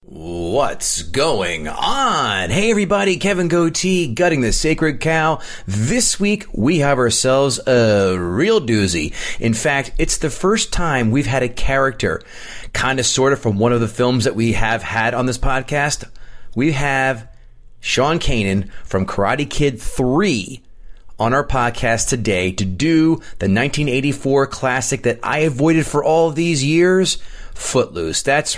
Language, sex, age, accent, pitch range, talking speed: English, male, 30-49, American, 110-145 Hz, 150 wpm